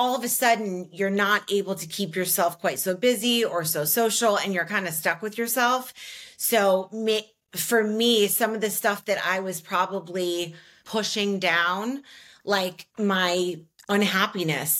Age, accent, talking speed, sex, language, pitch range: 30-49, American, 160 wpm, female, English, 160-200 Hz